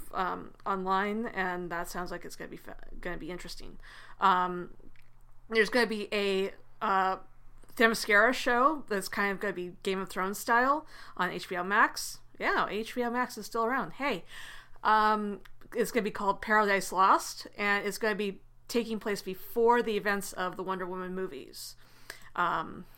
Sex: female